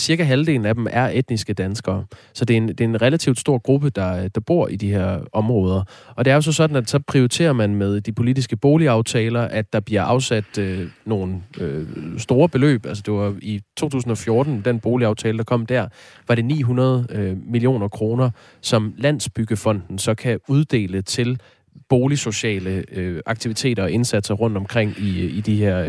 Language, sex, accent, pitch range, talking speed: Danish, male, native, 105-130 Hz, 185 wpm